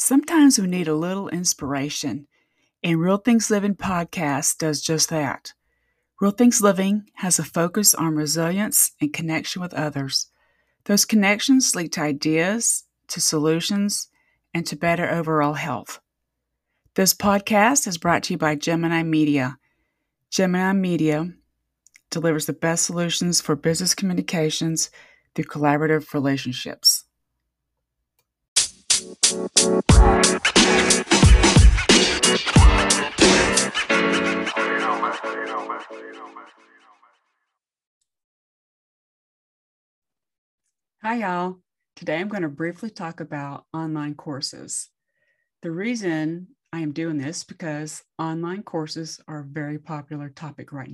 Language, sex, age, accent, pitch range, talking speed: English, female, 30-49, American, 150-185 Hz, 100 wpm